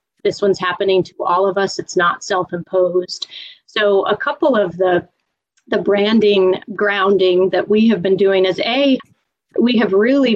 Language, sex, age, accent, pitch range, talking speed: English, female, 30-49, American, 180-210 Hz, 160 wpm